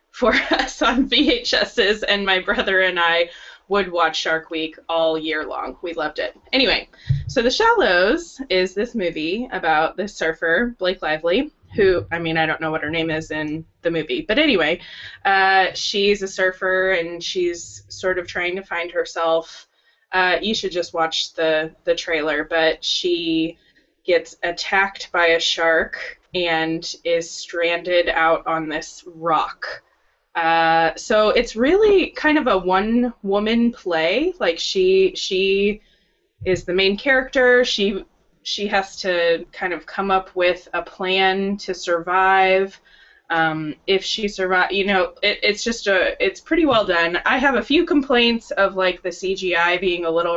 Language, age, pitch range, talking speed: English, 20-39, 170-210 Hz, 160 wpm